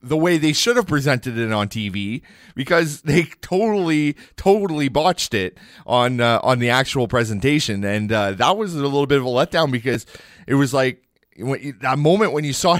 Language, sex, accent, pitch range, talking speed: English, male, American, 110-150 Hz, 190 wpm